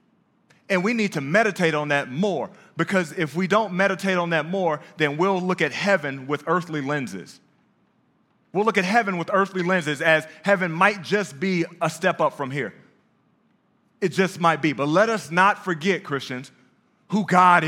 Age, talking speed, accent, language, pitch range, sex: 30-49, 180 wpm, American, English, 185-230 Hz, male